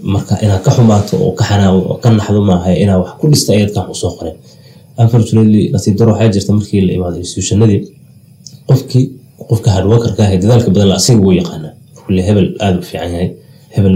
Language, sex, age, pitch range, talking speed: English, male, 20-39, 95-115 Hz, 75 wpm